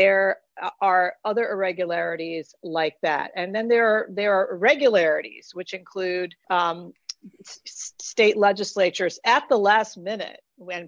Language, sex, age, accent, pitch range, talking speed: English, female, 50-69, American, 170-200 Hz, 130 wpm